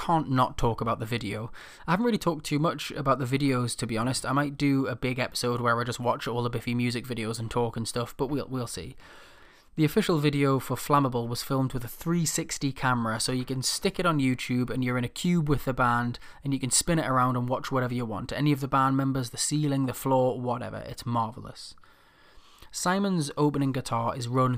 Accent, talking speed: British, 230 wpm